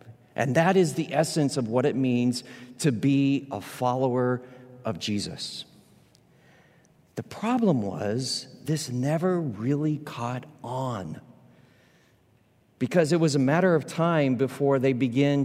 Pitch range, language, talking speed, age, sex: 125-160 Hz, English, 130 wpm, 50-69, male